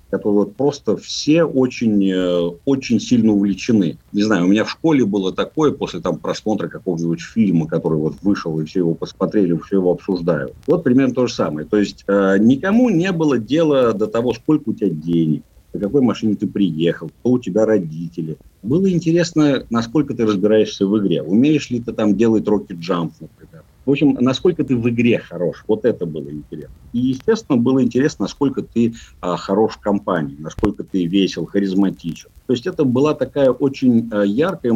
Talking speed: 180 wpm